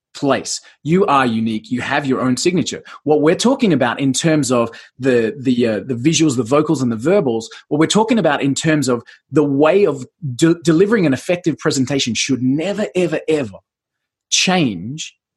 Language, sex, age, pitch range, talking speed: English, male, 30-49, 130-180 Hz, 180 wpm